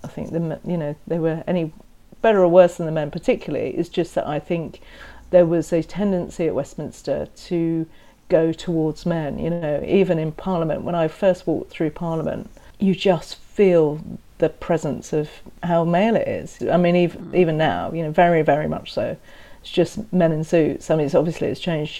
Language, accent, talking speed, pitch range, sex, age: English, British, 200 wpm, 155-175 Hz, female, 40-59